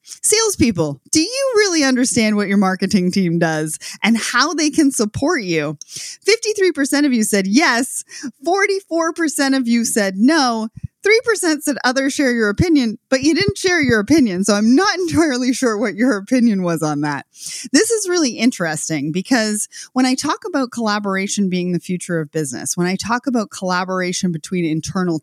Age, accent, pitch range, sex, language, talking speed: 30-49, American, 180-270 Hz, female, English, 170 wpm